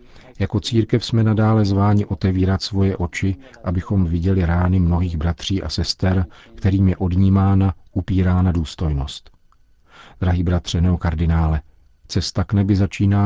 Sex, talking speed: male, 120 wpm